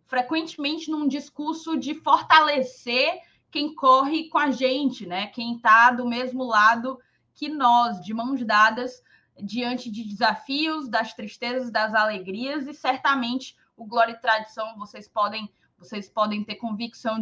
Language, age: Portuguese, 20-39